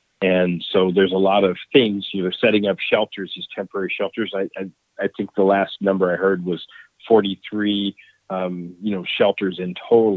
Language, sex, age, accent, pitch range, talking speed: English, male, 40-59, American, 90-100 Hz, 190 wpm